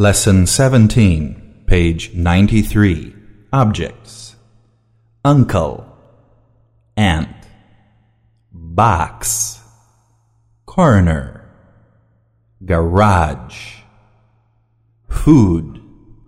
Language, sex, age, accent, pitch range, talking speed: Portuguese, male, 50-69, American, 100-115 Hz, 40 wpm